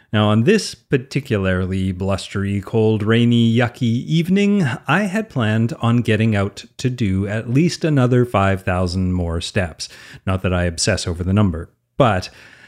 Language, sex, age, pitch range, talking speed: English, male, 30-49, 105-160 Hz, 145 wpm